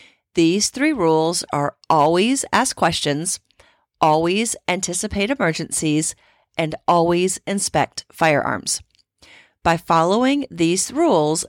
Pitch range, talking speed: 160-205 Hz, 95 wpm